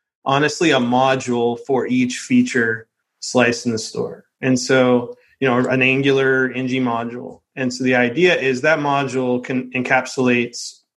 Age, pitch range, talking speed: 20-39, 125-140 Hz, 145 wpm